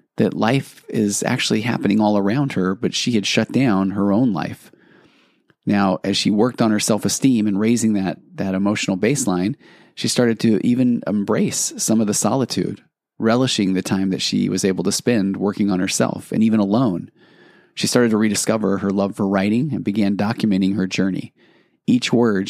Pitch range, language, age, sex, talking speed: 95-110 Hz, English, 30-49, male, 180 wpm